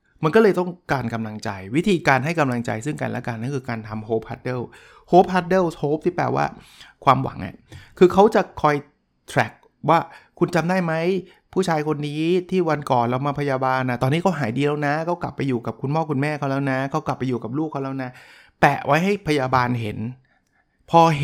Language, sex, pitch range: Thai, male, 120-160 Hz